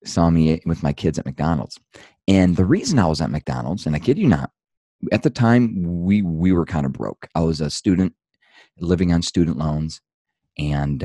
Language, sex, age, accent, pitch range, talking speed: English, male, 30-49, American, 75-100 Hz, 200 wpm